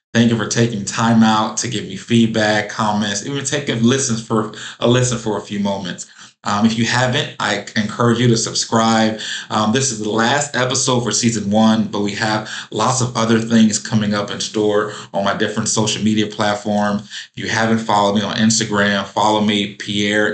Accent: American